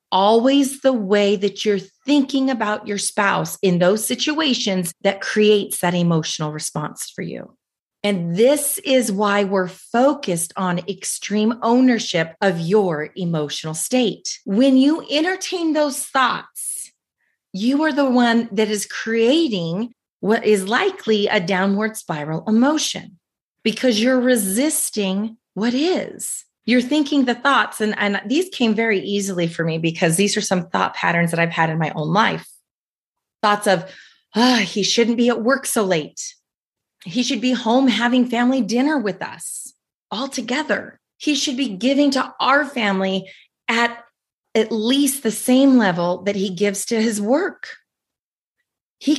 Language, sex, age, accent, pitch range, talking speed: English, female, 30-49, American, 195-265 Hz, 150 wpm